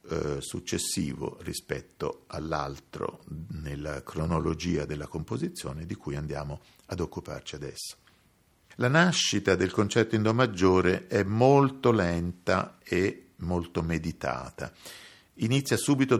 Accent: native